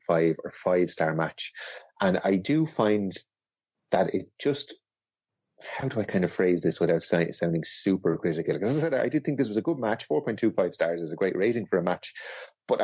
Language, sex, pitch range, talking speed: English, male, 85-130 Hz, 205 wpm